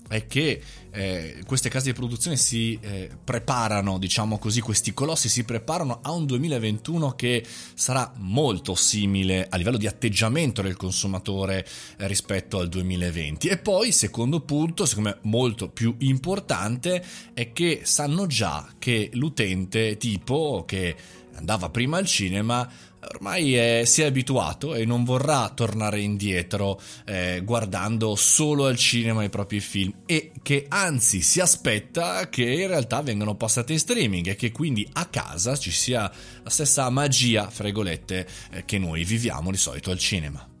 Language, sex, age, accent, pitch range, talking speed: Italian, male, 20-39, native, 100-135 Hz, 150 wpm